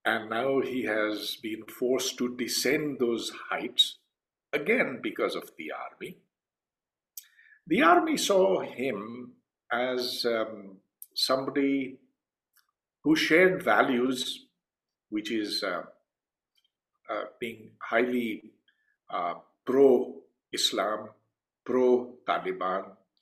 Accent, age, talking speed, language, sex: Indian, 50-69, 90 wpm, English, male